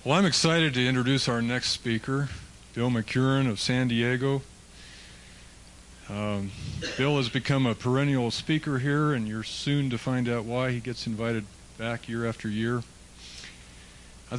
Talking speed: 150 wpm